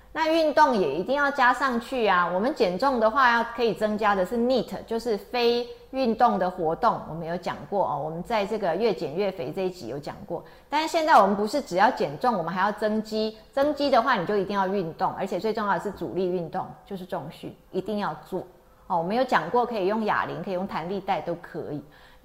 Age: 30-49